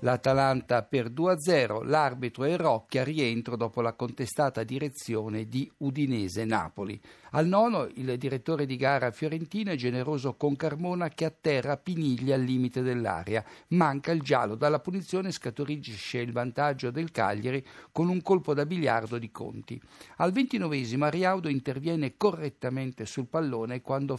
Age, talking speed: 60-79, 135 wpm